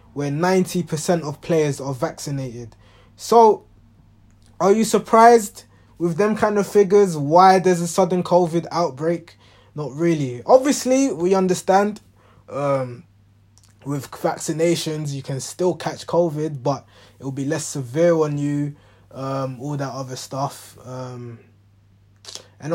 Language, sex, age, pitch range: English, male, 20-39, 130-175 Hz